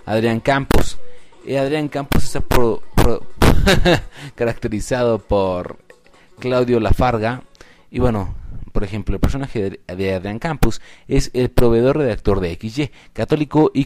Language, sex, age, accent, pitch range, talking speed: Spanish, male, 30-49, Mexican, 100-130 Hz, 115 wpm